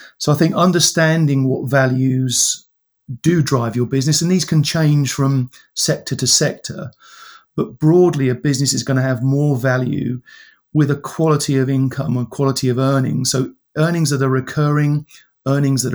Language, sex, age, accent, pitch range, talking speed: English, male, 40-59, British, 130-150 Hz, 165 wpm